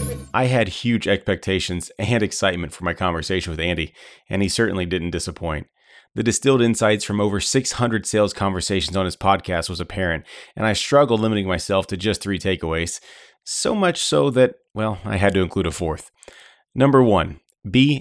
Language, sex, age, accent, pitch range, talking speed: English, male, 30-49, American, 95-125 Hz, 175 wpm